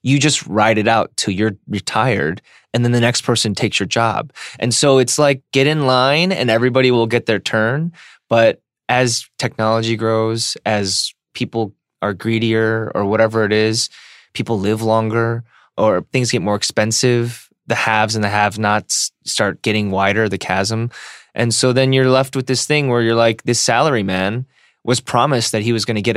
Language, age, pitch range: English, 20-39, 110-130 Hz